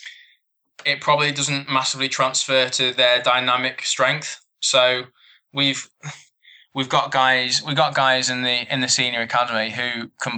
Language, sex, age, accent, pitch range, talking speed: English, male, 20-39, British, 120-135 Hz, 145 wpm